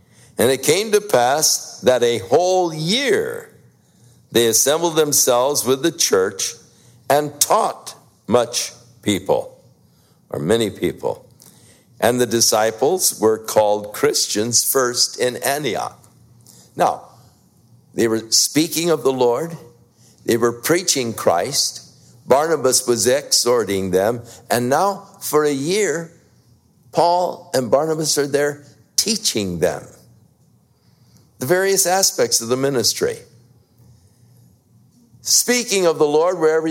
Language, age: English, 60-79